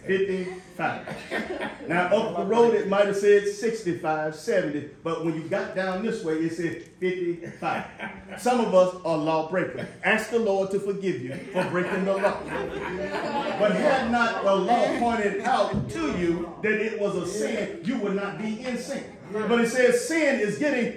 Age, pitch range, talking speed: 40-59, 195-260 Hz, 175 wpm